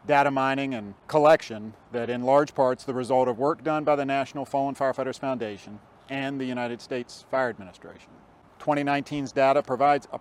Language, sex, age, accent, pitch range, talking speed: English, male, 40-59, American, 120-150 Hz, 170 wpm